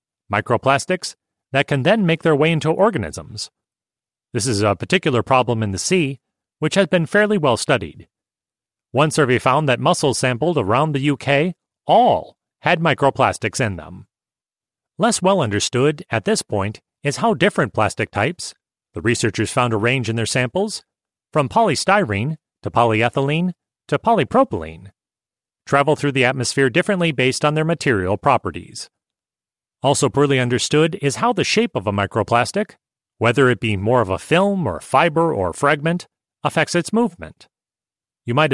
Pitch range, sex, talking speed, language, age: 115-165 Hz, male, 155 wpm, English, 30-49